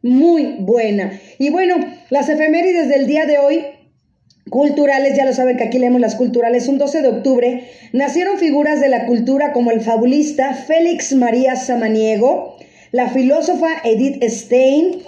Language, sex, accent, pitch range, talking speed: Spanish, female, Mexican, 250-310 Hz, 150 wpm